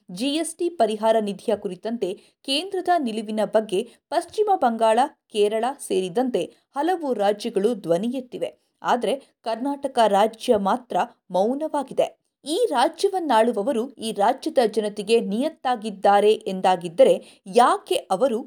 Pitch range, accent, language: 220-315 Hz, native, Kannada